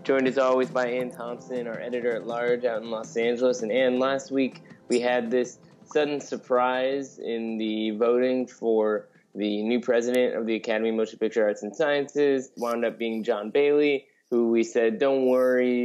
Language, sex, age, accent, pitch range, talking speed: English, male, 20-39, American, 110-130 Hz, 180 wpm